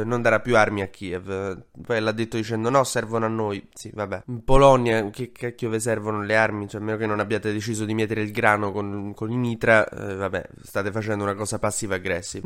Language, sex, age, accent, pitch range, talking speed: Italian, male, 20-39, native, 110-145 Hz, 225 wpm